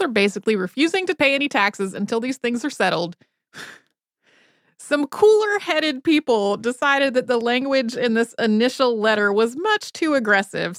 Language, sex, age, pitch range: English, female, 30-49, 205-270 Hz